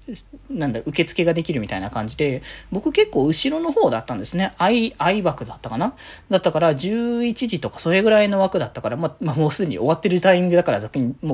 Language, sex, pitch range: Japanese, male, 135-210 Hz